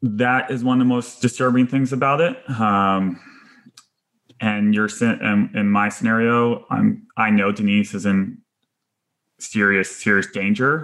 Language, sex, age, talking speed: English, male, 20-39, 150 wpm